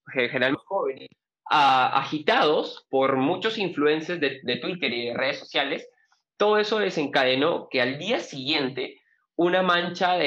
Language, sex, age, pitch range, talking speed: Spanish, male, 20-39, 135-180 Hz, 140 wpm